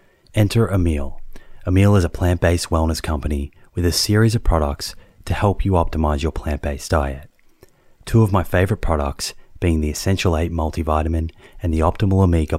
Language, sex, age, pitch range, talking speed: English, male, 30-49, 80-95 Hz, 160 wpm